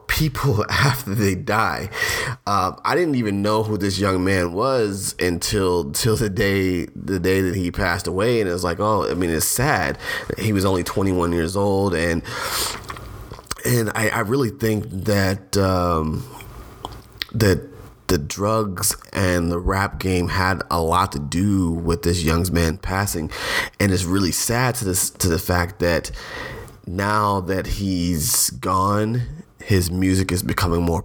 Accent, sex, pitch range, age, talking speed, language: American, male, 85-105 Hz, 30-49, 160 wpm, English